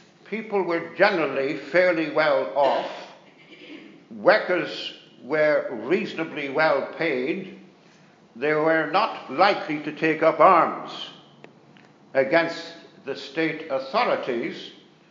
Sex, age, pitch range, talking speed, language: male, 60-79, 140-185 Hz, 90 wpm, English